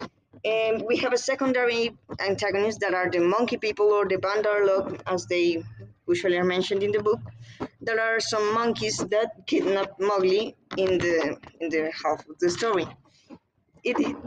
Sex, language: female, Spanish